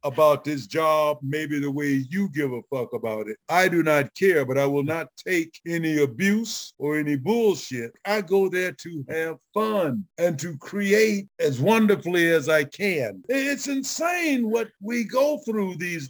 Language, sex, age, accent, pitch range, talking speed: English, male, 60-79, American, 170-240 Hz, 175 wpm